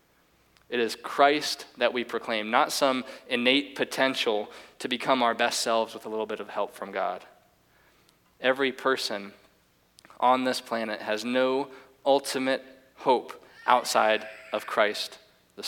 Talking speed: 140 wpm